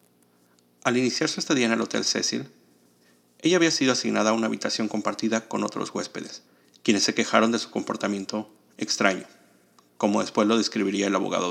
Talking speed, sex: 165 wpm, male